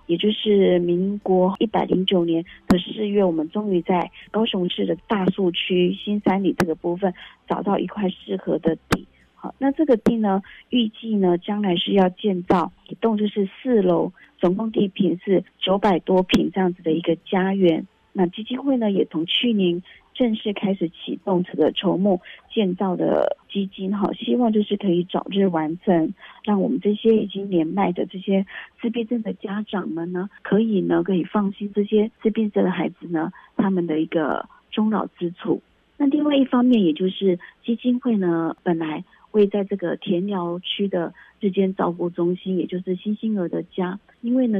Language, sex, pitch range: Chinese, female, 175-210 Hz